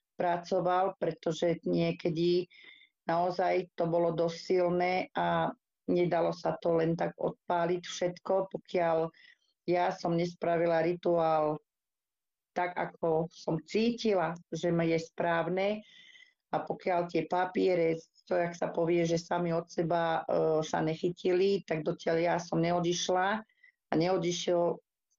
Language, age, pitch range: Slovak, 40-59, 165-185 Hz